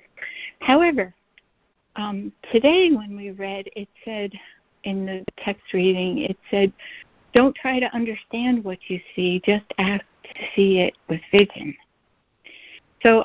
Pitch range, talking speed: 180-215 Hz, 130 wpm